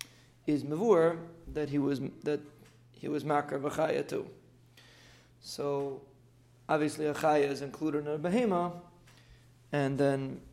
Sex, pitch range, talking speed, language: male, 130-180 Hz, 130 wpm, English